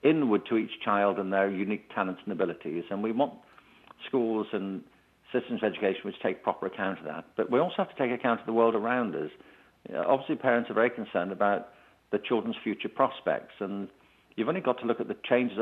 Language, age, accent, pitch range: English, 50-69, British, 100-125 Hz